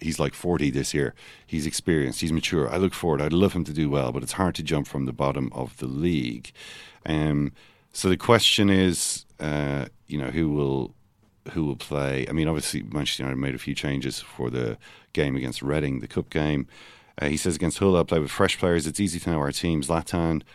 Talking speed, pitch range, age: 220 wpm, 70-85 Hz, 40-59